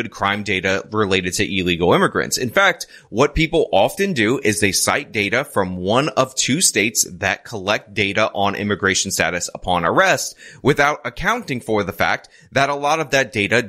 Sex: male